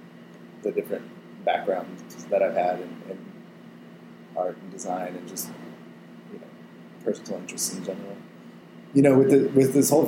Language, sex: English, male